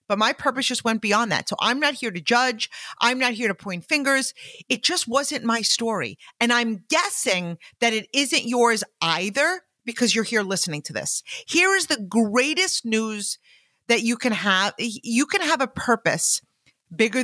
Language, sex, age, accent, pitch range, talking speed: English, female, 40-59, American, 210-275 Hz, 185 wpm